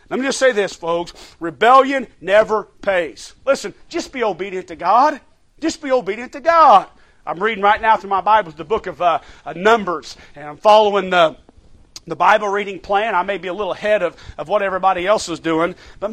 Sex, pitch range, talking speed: male, 200-270 Hz, 200 wpm